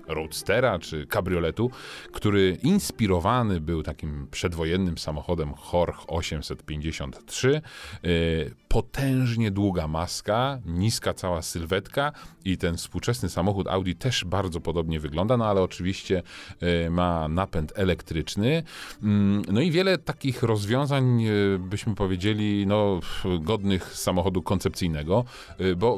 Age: 40-59